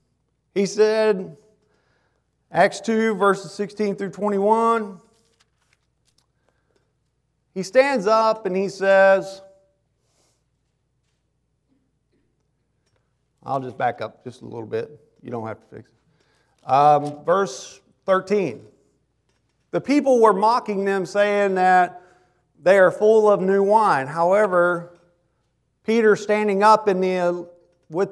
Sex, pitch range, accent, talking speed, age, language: male, 160-210 Hz, American, 110 wpm, 40-59, English